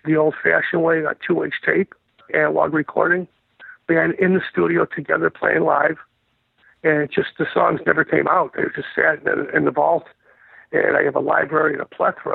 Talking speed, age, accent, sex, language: 185 wpm, 50-69, American, male, English